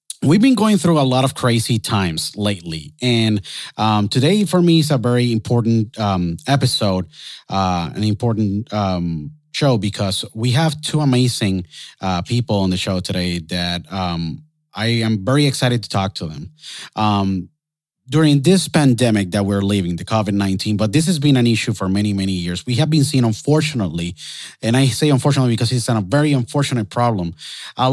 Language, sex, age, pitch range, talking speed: Spanish, male, 30-49, 100-135 Hz, 175 wpm